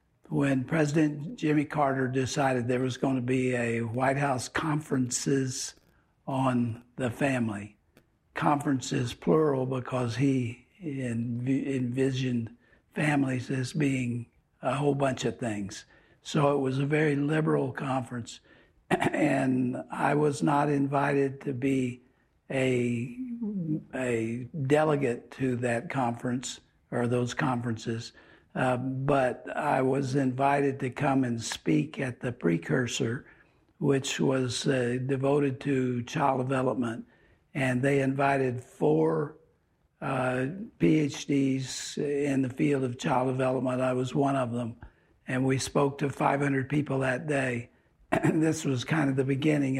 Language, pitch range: English, 125-140 Hz